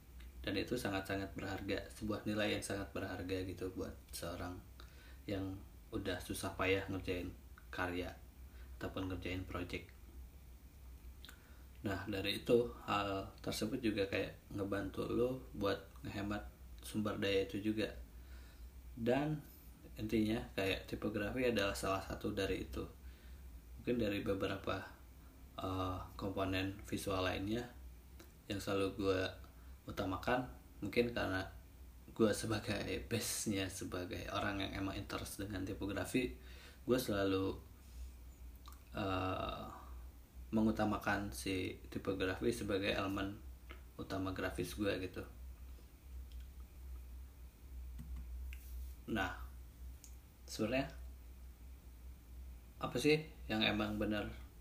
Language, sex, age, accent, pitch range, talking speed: Indonesian, male, 20-39, native, 65-100 Hz, 95 wpm